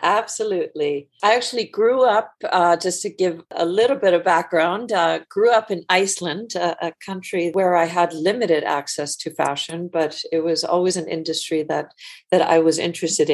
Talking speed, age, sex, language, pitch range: 180 wpm, 50-69, female, English, 155-185 Hz